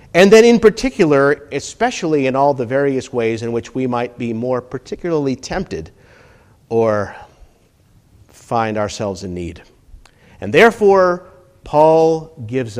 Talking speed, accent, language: 125 wpm, American, English